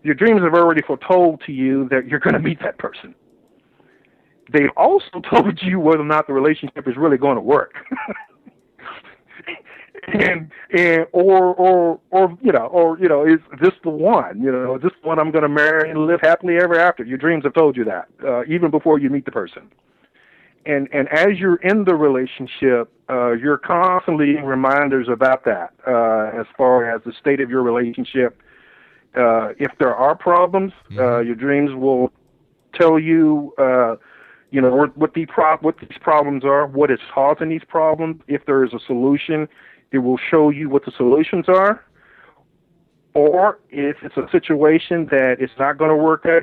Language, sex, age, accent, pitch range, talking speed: English, male, 50-69, American, 135-165 Hz, 180 wpm